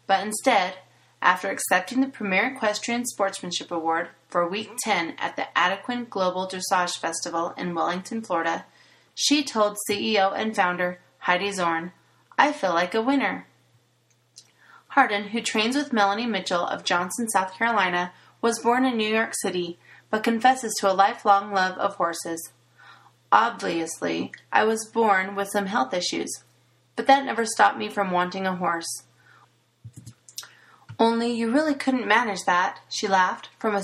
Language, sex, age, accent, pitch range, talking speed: English, female, 30-49, American, 180-225 Hz, 150 wpm